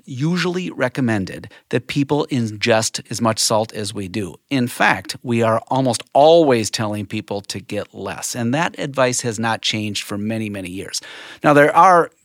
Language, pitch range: English, 105-145 Hz